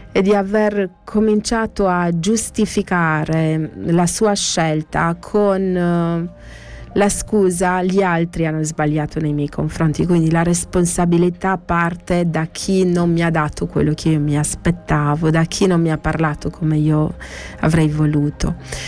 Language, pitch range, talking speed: Italian, 155-190 Hz, 140 wpm